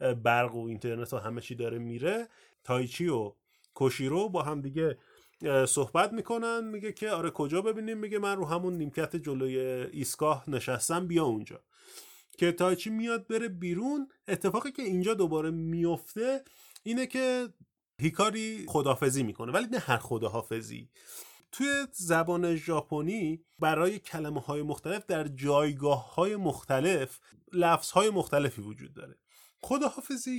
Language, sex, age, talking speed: Persian, male, 30-49, 130 wpm